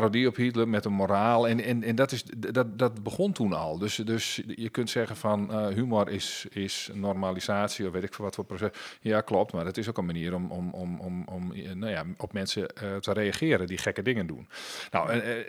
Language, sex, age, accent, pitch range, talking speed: Dutch, male, 40-59, Dutch, 100-125 Hz, 215 wpm